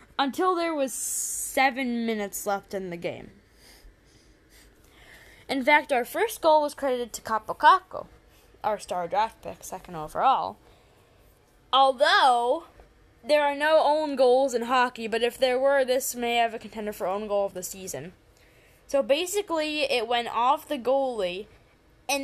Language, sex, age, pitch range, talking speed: English, female, 10-29, 210-285 Hz, 150 wpm